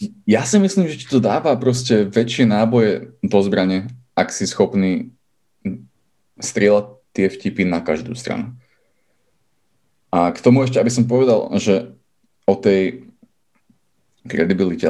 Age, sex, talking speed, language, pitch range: 20-39, male, 125 wpm, English, 95-125 Hz